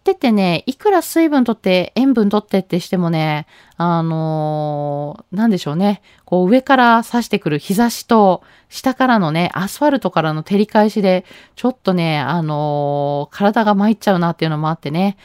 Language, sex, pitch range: Japanese, female, 165-230 Hz